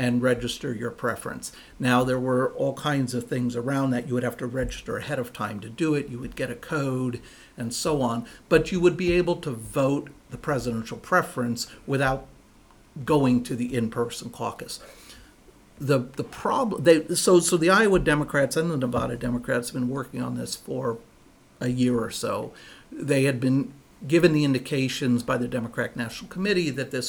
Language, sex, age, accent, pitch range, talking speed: English, male, 60-79, American, 125-150 Hz, 185 wpm